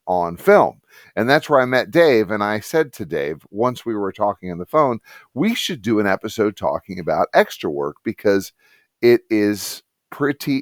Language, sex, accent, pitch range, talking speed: English, male, American, 100-130 Hz, 185 wpm